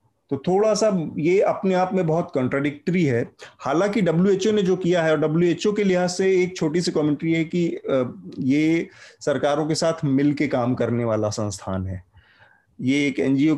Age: 30-49